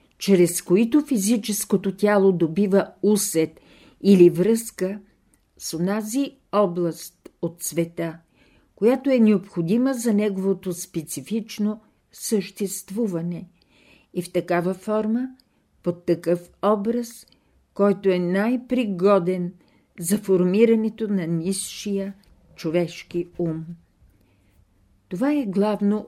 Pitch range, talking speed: 175-215 Hz, 90 wpm